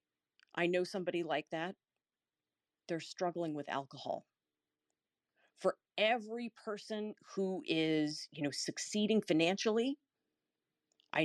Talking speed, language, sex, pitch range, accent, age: 100 wpm, English, female, 145-200 Hz, American, 40-59